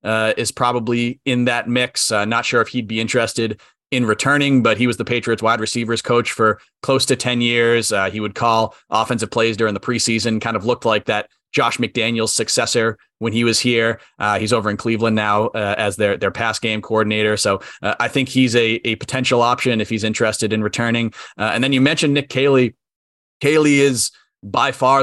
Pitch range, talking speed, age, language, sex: 110-130 Hz, 210 wpm, 30-49, English, male